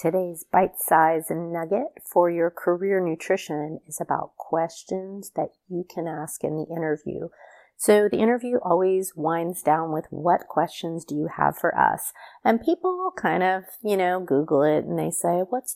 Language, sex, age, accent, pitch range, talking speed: English, female, 30-49, American, 160-200 Hz, 165 wpm